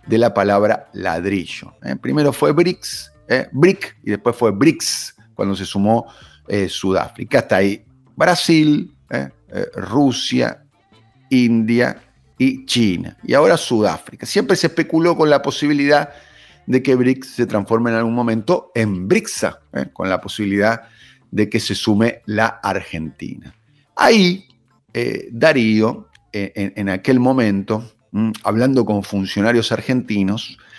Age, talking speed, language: 40-59, 125 wpm, Spanish